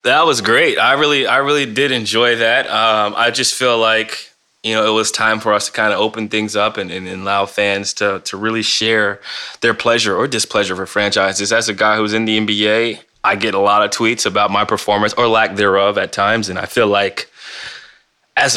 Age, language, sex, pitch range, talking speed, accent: 20-39, English, male, 105-120 Hz, 225 wpm, American